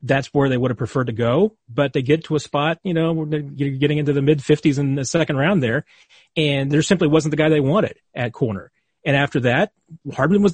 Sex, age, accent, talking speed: male, 30-49, American, 235 wpm